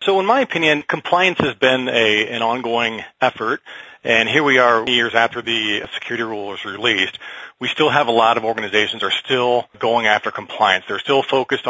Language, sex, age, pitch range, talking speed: English, male, 40-59, 110-125 Hz, 190 wpm